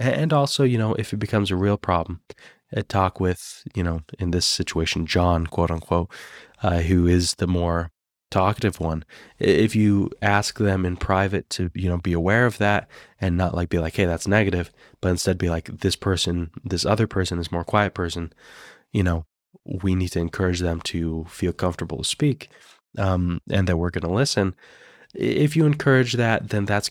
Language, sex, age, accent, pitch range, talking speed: English, male, 20-39, American, 85-105 Hz, 190 wpm